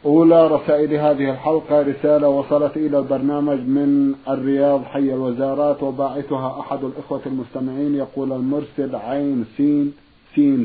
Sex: male